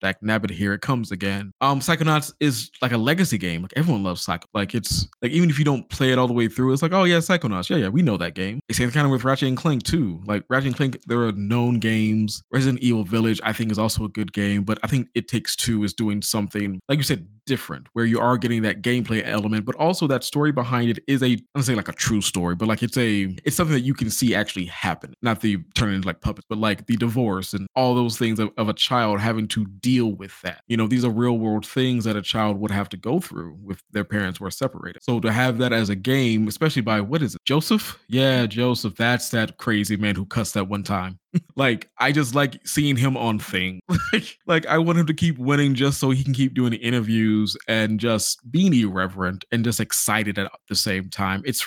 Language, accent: English, American